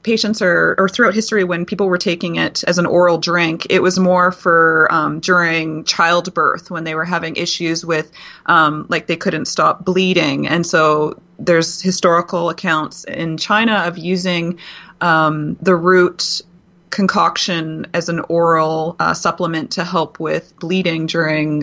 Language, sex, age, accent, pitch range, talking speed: English, female, 30-49, American, 165-185 Hz, 155 wpm